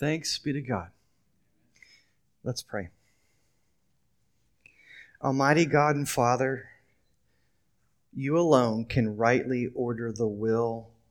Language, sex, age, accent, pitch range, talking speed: English, male, 30-49, American, 110-140 Hz, 90 wpm